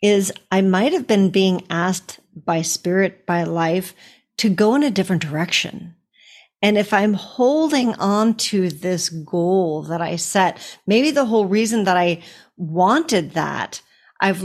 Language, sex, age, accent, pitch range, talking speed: English, female, 40-59, American, 170-210 Hz, 155 wpm